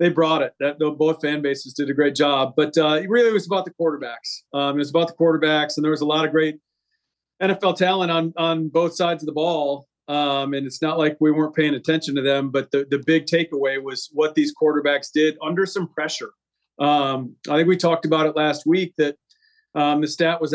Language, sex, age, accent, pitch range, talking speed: English, male, 40-59, American, 150-170 Hz, 230 wpm